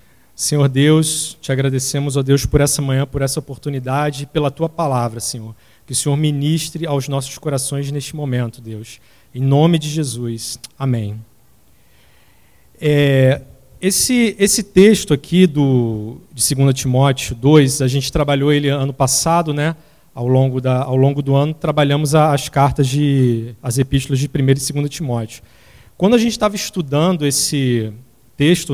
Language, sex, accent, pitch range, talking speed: English, male, Brazilian, 135-175 Hz, 155 wpm